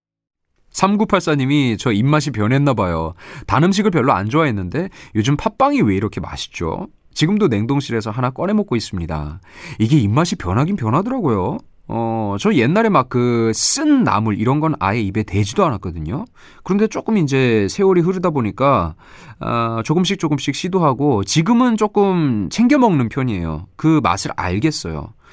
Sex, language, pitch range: male, Korean, 100-160 Hz